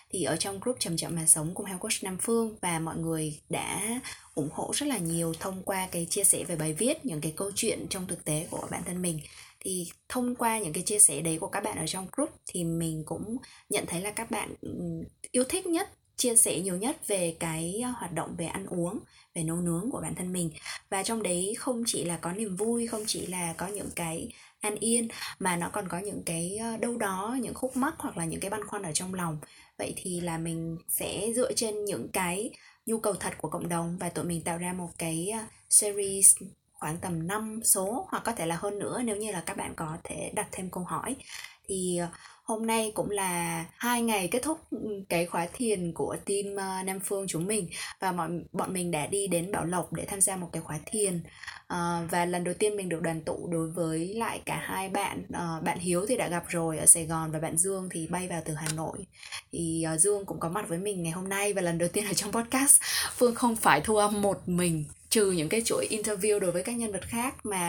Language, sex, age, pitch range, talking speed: Vietnamese, female, 20-39, 165-215 Hz, 240 wpm